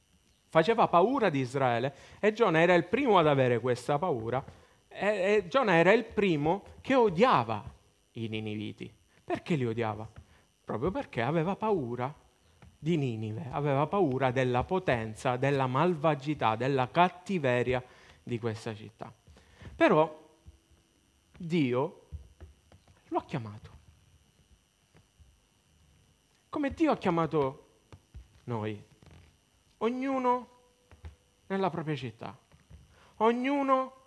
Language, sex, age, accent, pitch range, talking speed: Italian, male, 40-59, native, 110-175 Hz, 100 wpm